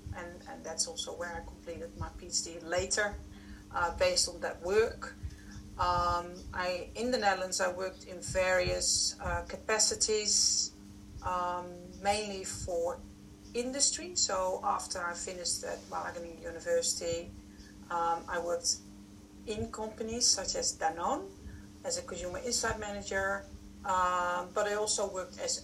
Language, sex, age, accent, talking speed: English, female, 40-59, Dutch, 130 wpm